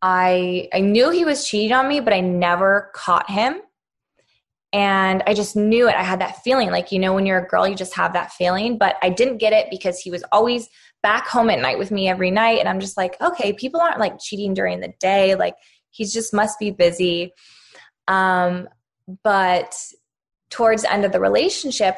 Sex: female